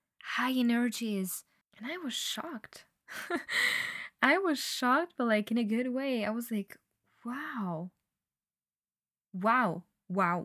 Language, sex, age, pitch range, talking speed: English, female, 10-29, 190-275 Hz, 120 wpm